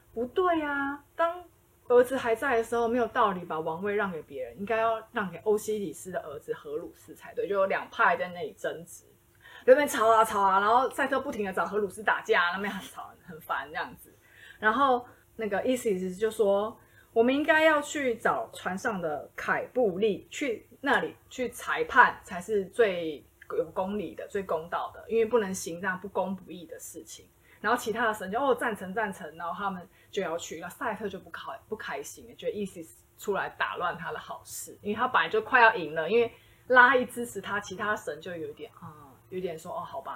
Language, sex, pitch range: Chinese, female, 195-250 Hz